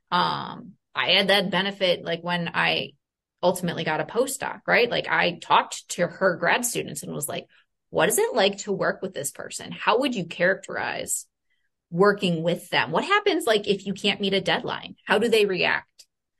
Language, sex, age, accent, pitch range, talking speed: English, female, 20-39, American, 170-205 Hz, 190 wpm